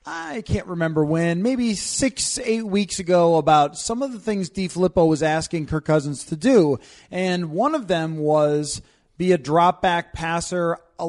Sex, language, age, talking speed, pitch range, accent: male, English, 30-49, 175 wpm, 165-210 Hz, American